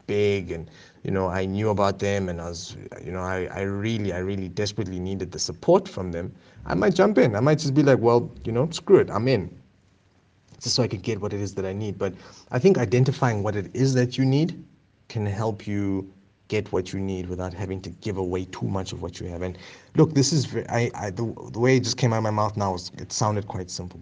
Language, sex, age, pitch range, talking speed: English, male, 30-49, 95-125 Hz, 255 wpm